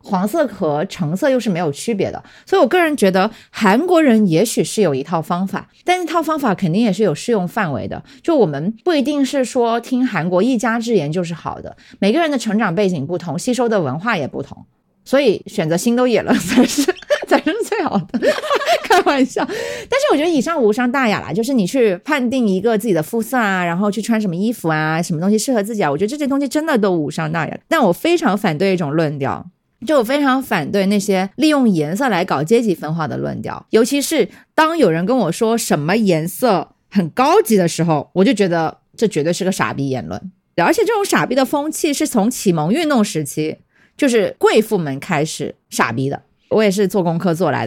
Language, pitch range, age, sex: Chinese, 180-255 Hz, 30-49, female